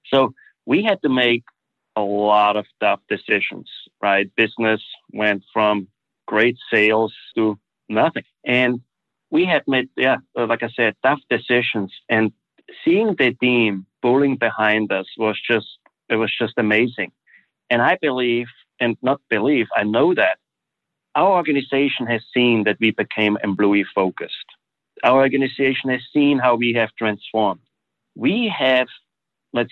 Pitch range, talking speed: 110-130 Hz, 140 wpm